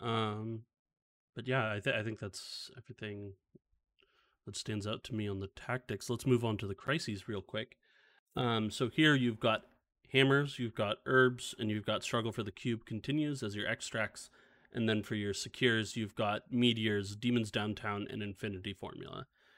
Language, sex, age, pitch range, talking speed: English, male, 30-49, 105-125 Hz, 175 wpm